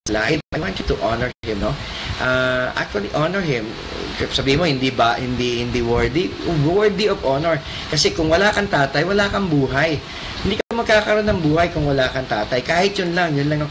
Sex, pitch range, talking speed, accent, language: male, 115-145 Hz, 195 wpm, Filipino, English